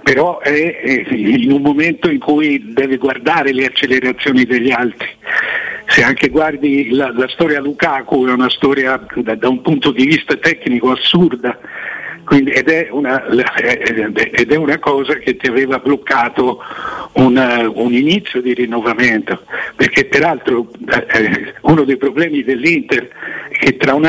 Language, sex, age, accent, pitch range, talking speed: Italian, male, 60-79, native, 125-165 Hz, 135 wpm